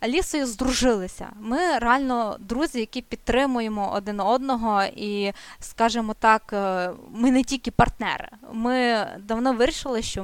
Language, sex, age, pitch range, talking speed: Ukrainian, female, 20-39, 220-270 Hz, 115 wpm